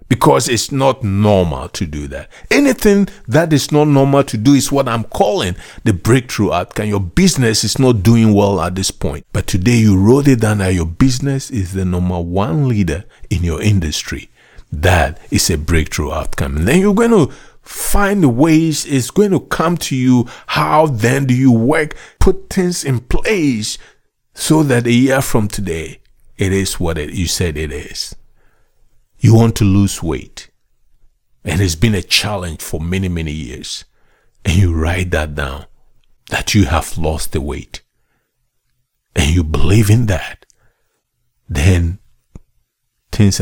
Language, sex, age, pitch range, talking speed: English, male, 50-69, 85-125 Hz, 165 wpm